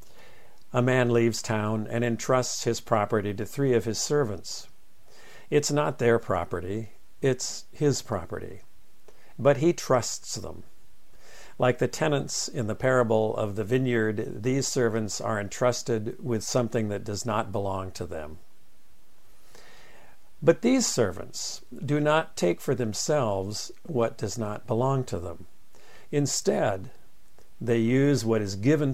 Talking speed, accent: 135 wpm, American